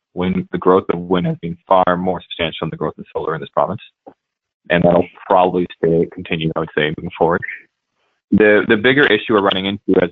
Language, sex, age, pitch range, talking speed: English, male, 20-39, 90-105 Hz, 215 wpm